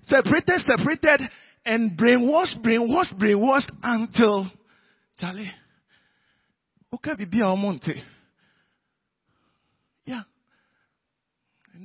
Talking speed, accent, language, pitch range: 80 wpm, Nigerian, English, 200-280 Hz